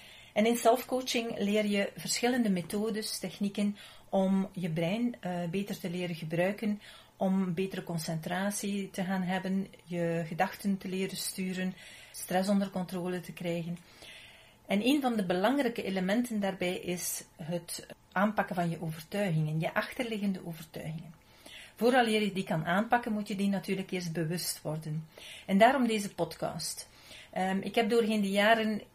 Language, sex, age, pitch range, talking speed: Dutch, female, 40-59, 175-210 Hz, 140 wpm